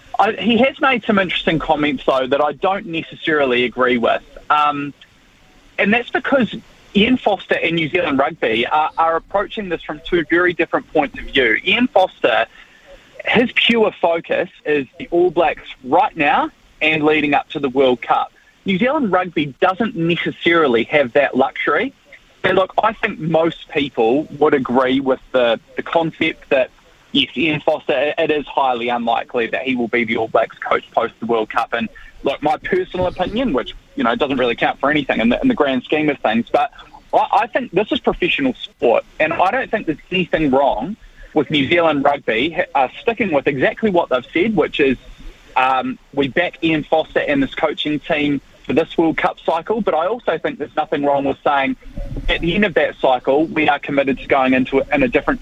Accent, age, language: Australian, 20-39, English